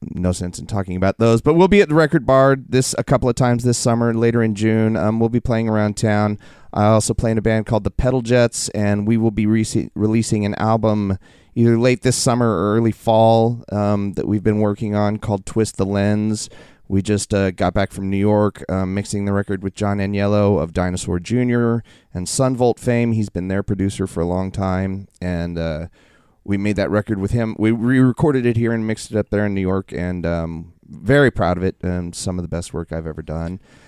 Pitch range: 95-115 Hz